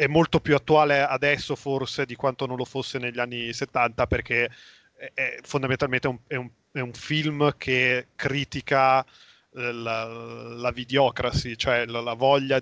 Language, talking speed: Italian, 150 wpm